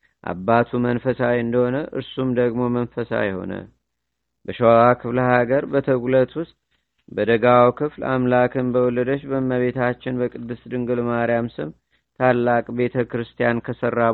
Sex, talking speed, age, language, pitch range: male, 100 wpm, 50-69, Amharic, 115-125 Hz